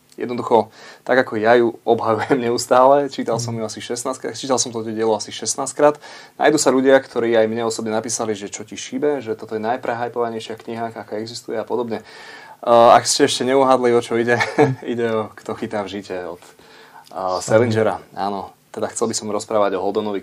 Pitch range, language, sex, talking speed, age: 105-120 Hz, Slovak, male, 185 wpm, 20-39